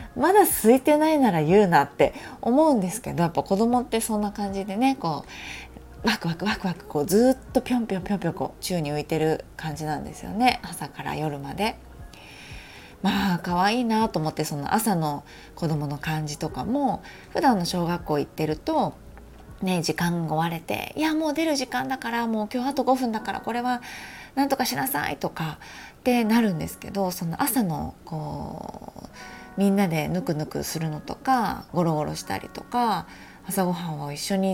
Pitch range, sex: 160-235 Hz, female